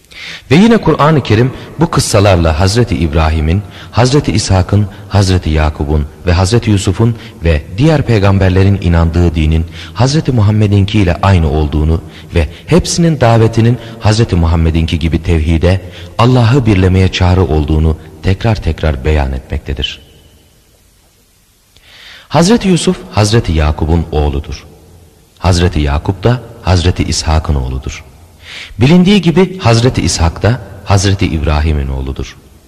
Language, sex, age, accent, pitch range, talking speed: Turkish, male, 40-59, native, 80-110 Hz, 110 wpm